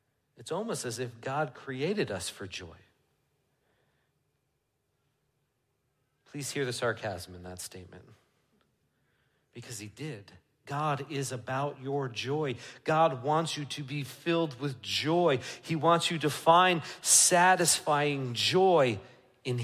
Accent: American